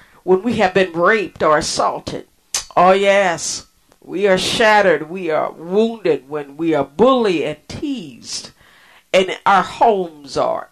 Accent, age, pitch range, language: American, 50-69, 145-195 Hz, English